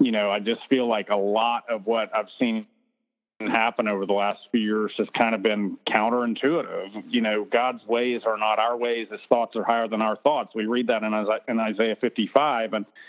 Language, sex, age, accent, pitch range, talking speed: English, male, 50-69, American, 110-125 Hz, 205 wpm